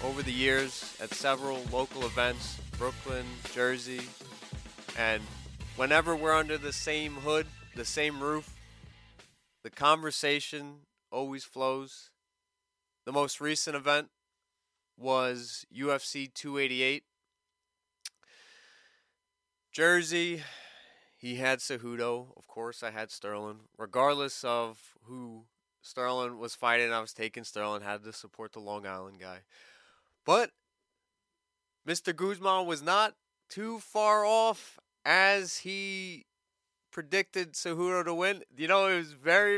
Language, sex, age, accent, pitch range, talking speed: English, male, 20-39, American, 125-175 Hz, 115 wpm